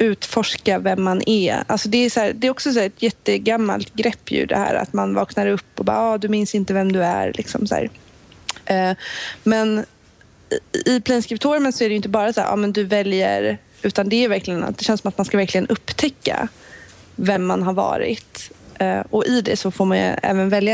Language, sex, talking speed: Swedish, female, 225 wpm